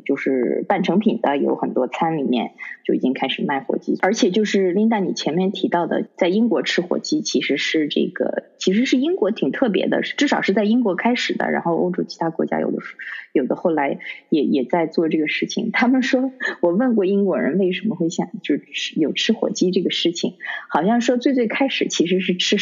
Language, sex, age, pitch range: Chinese, female, 20-39, 160-225 Hz